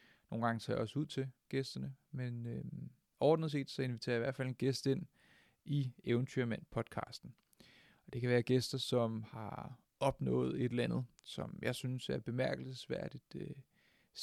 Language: Danish